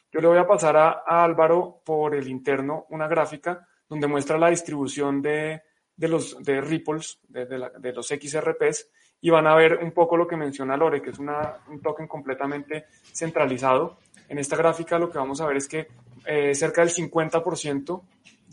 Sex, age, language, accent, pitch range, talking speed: male, 20-39, Spanish, Colombian, 145-170 Hz, 190 wpm